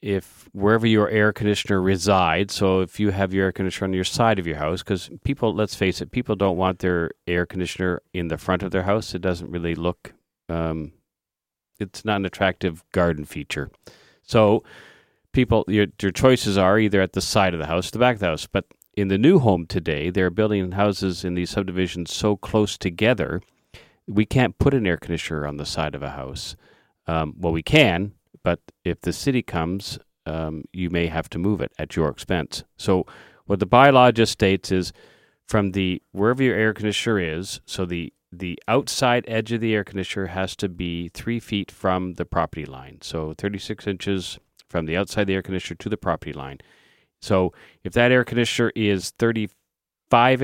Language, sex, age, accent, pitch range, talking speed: English, male, 40-59, American, 85-105 Hz, 195 wpm